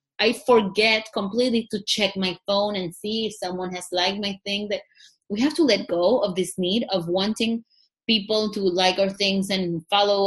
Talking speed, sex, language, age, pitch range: 195 wpm, female, English, 20-39, 175-220 Hz